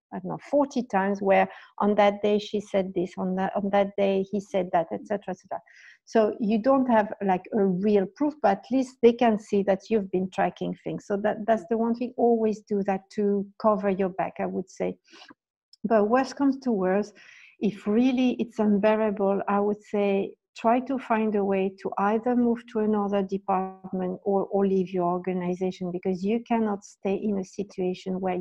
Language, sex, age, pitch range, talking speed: English, female, 60-79, 190-220 Hz, 200 wpm